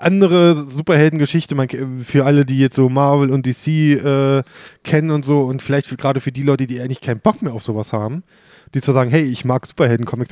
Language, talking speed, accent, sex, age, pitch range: German, 210 wpm, German, male, 20-39, 125-150 Hz